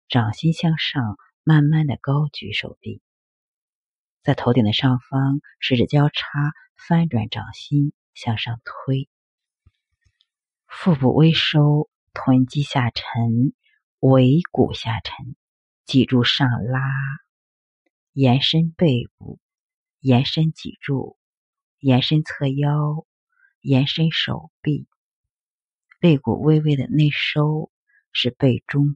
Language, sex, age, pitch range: Chinese, female, 50-69, 125-160 Hz